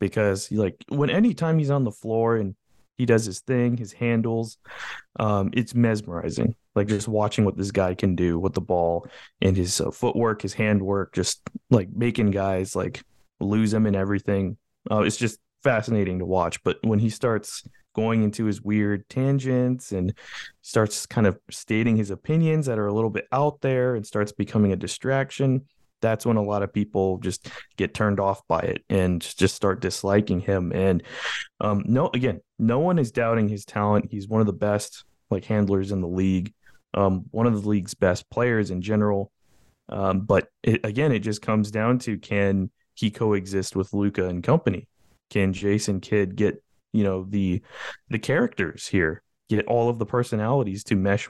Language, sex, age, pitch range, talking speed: English, male, 20-39, 95-115 Hz, 185 wpm